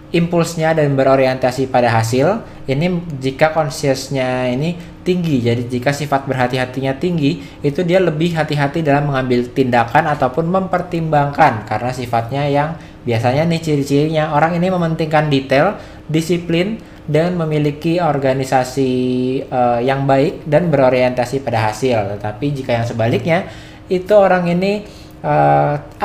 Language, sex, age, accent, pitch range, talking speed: English, male, 20-39, Indonesian, 125-165 Hz, 120 wpm